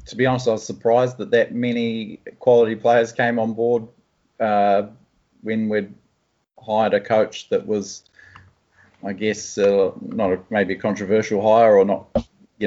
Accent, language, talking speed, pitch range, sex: Australian, English, 165 wpm, 95-110 Hz, male